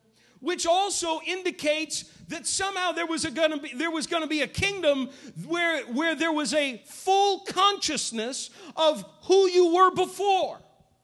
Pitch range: 250-330 Hz